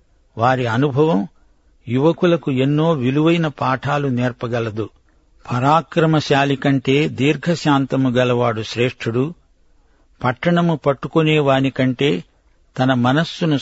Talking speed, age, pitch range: 70 wpm, 60-79, 115-150 Hz